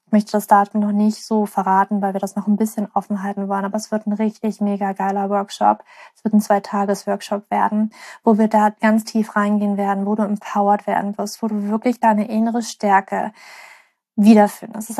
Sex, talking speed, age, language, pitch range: female, 195 wpm, 20-39, German, 210-230 Hz